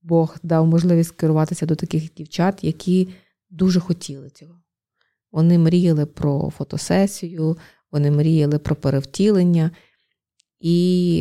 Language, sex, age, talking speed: Ukrainian, female, 20-39, 105 wpm